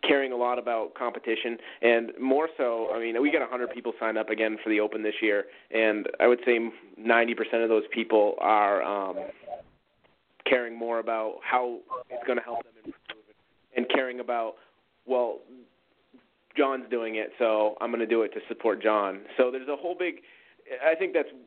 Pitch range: 115-135 Hz